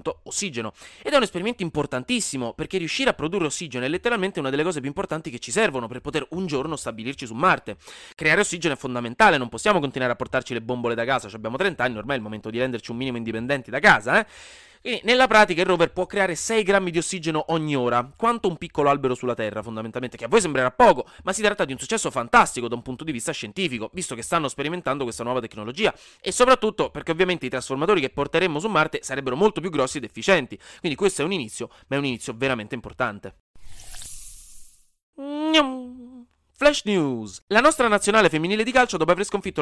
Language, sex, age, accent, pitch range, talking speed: Italian, male, 30-49, native, 125-205 Hz, 215 wpm